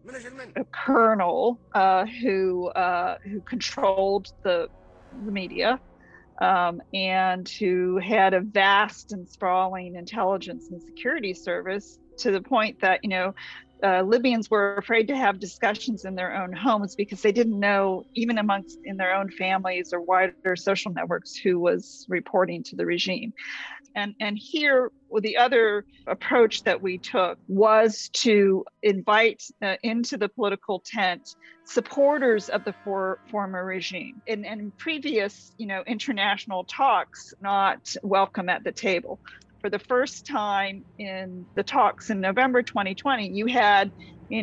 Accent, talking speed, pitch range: American, 150 wpm, 190-240 Hz